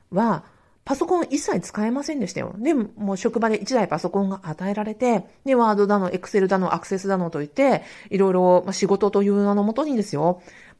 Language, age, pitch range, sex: Japanese, 40-59, 180-255 Hz, female